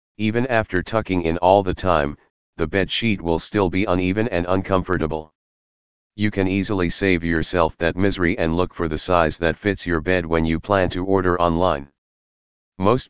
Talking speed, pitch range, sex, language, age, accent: 180 wpm, 80-95 Hz, male, English, 40-59, American